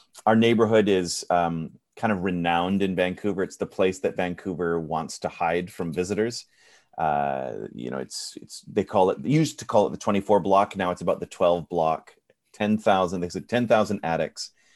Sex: male